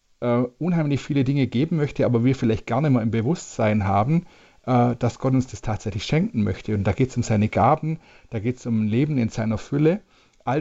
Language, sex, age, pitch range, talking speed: German, male, 40-59, 110-135 Hz, 220 wpm